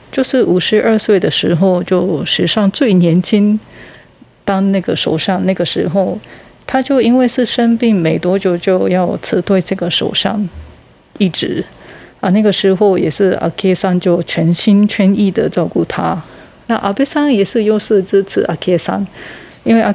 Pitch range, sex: 180-215 Hz, female